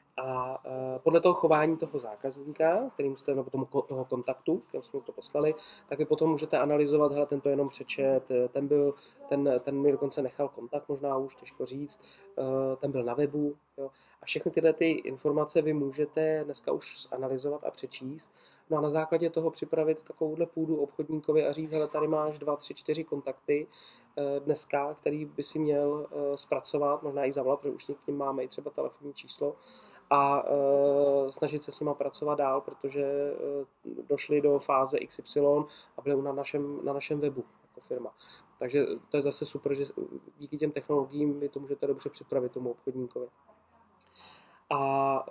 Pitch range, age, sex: 130-150 Hz, 30-49, male